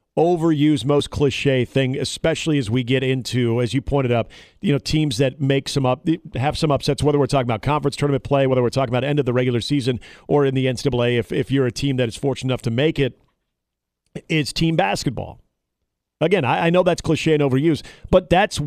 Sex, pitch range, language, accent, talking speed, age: male, 125-155 Hz, English, American, 220 wpm, 40-59